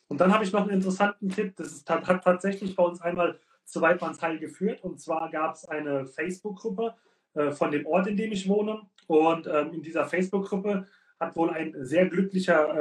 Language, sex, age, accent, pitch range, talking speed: German, male, 30-49, German, 150-190 Hz, 190 wpm